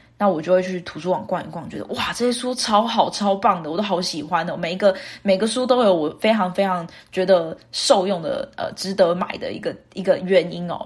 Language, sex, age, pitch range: Chinese, female, 20-39, 175-225 Hz